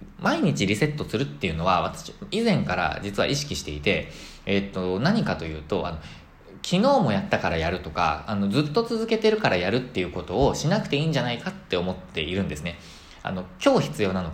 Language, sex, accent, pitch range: Japanese, male, native, 85-130 Hz